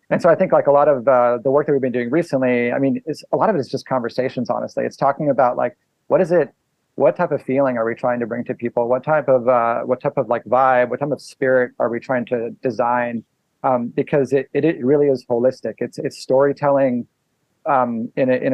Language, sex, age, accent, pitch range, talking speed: English, male, 30-49, American, 125-140 Hz, 255 wpm